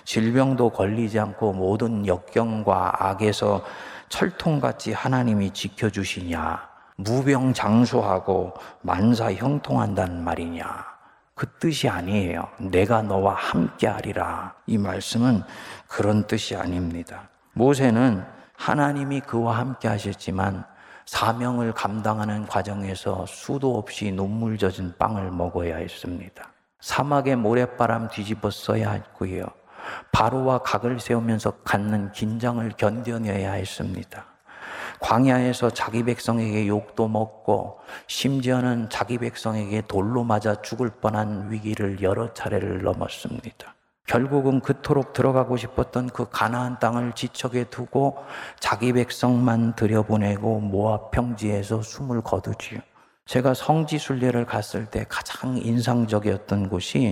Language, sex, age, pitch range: Korean, male, 40-59, 100-125 Hz